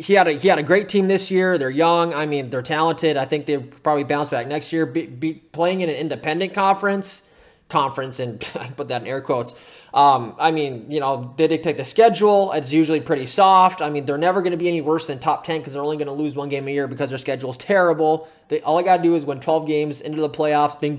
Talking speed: 255 wpm